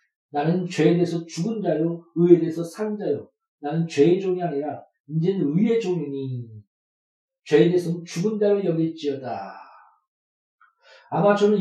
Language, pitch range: Korean, 165-215 Hz